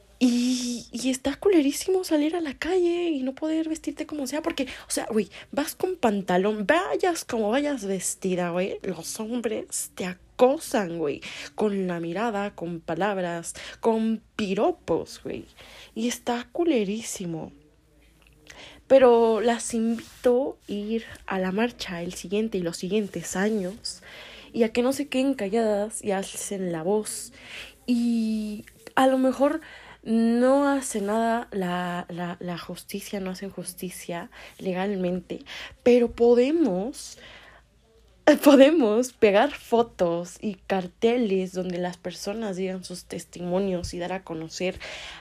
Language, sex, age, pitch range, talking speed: Spanish, female, 20-39, 185-255 Hz, 130 wpm